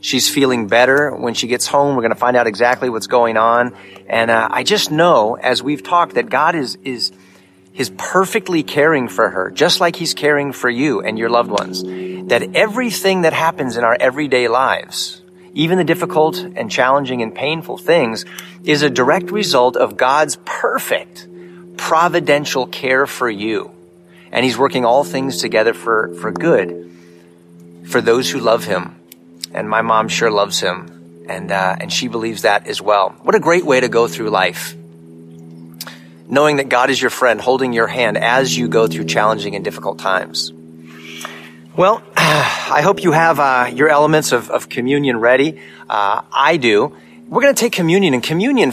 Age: 30-49